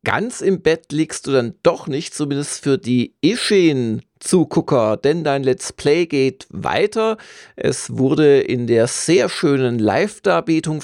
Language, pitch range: German, 120-145 Hz